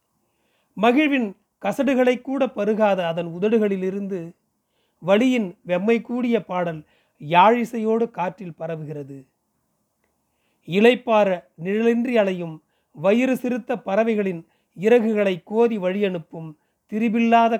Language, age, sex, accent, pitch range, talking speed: Tamil, 40-59, male, native, 175-230 Hz, 80 wpm